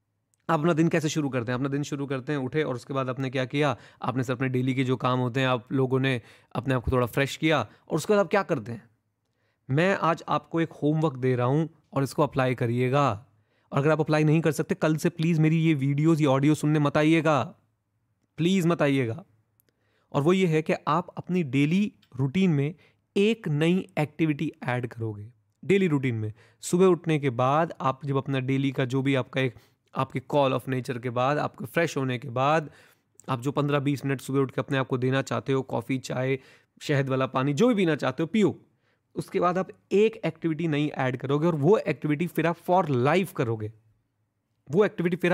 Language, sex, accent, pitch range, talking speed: Hindi, male, native, 130-165 Hz, 215 wpm